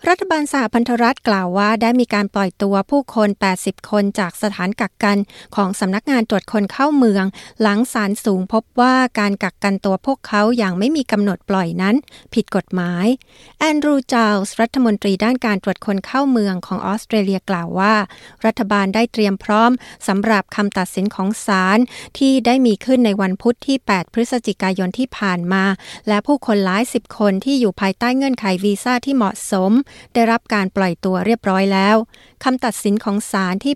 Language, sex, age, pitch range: Thai, female, 60-79, 195-235 Hz